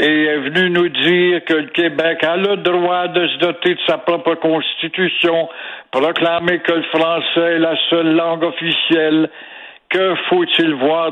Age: 60-79